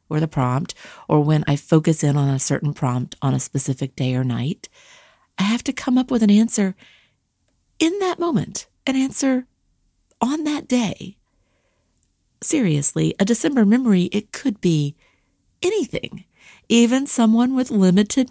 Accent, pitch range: American, 140-230 Hz